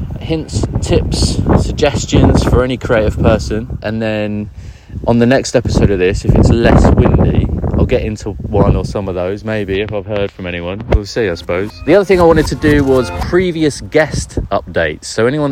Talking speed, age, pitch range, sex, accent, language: 195 wpm, 30-49, 100-120 Hz, male, British, English